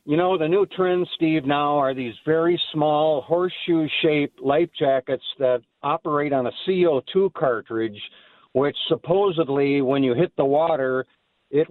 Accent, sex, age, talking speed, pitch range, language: American, male, 50-69, 150 wpm, 130-175 Hz, English